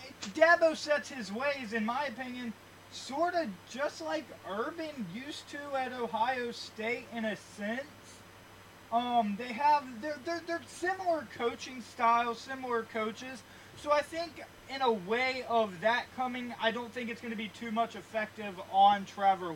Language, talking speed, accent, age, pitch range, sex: English, 160 wpm, American, 20-39, 190-235 Hz, male